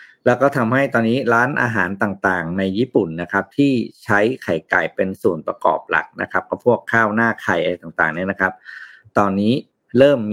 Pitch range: 100-130 Hz